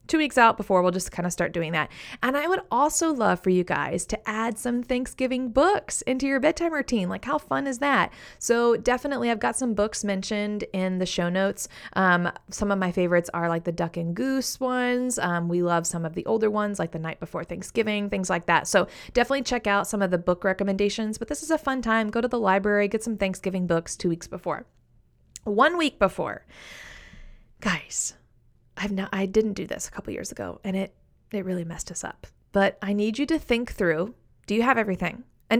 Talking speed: 215 wpm